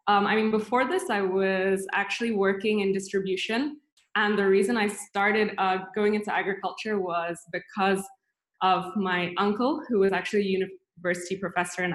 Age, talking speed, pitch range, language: 20-39, 160 wpm, 185-205 Hz, English